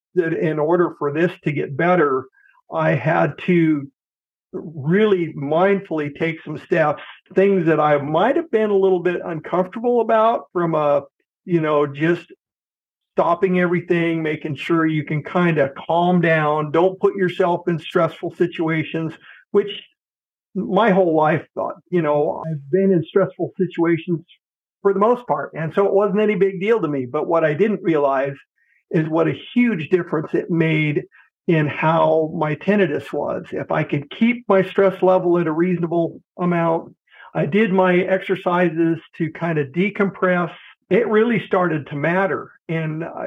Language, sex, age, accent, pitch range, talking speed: English, male, 50-69, American, 160-190 Hz, 160 wpm